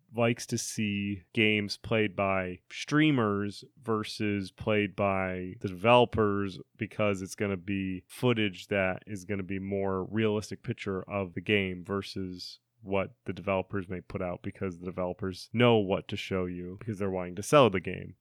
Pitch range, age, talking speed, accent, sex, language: 100-125 Hz, 30-49, 170 wpm, American, male, English